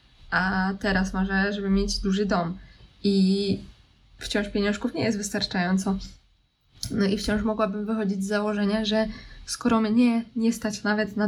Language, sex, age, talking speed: Polish, female, 20-39, 145 wpm